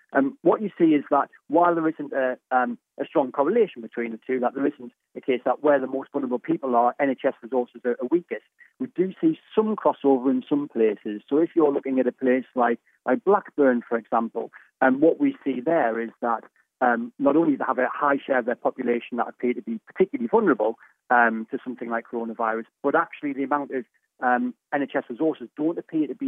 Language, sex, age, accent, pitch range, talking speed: English, male, 30-49, British, 120-145 Hz, 220 wpm